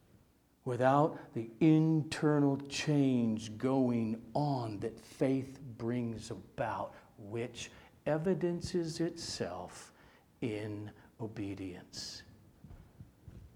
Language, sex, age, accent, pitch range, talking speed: English, male, 60-79, American, 110-160 Hz, 65 wpm